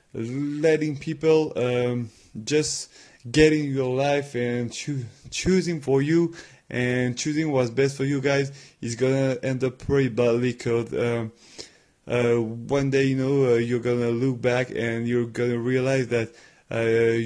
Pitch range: 115-130 Hz